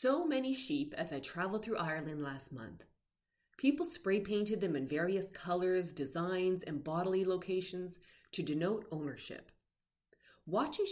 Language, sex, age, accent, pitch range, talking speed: English, female, 30-49, American, 150-210 Hz, 135 wpm